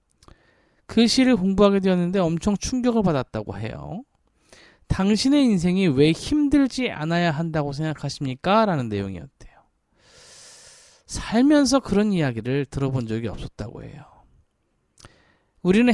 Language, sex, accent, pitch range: Korean, male, native, 150-245 Hz